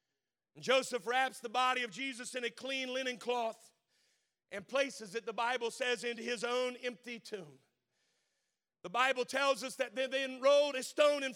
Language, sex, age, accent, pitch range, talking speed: English, male, 50-69, American, 235-275 Hz, 175 wpm